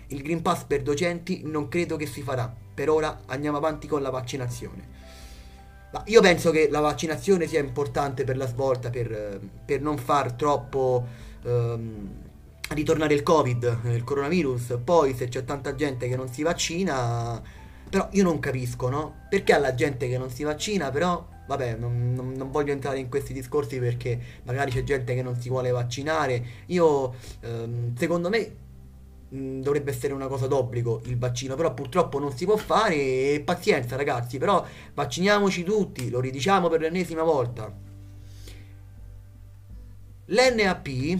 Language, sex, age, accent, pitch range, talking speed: Italian, male, 30-49, native, 120-160 Hz, 155 wpm